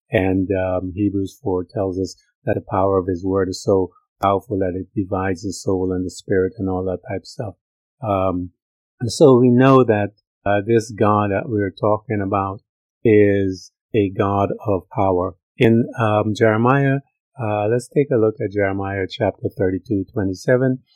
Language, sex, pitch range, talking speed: English, male, 95-115 Hz, 170 wpm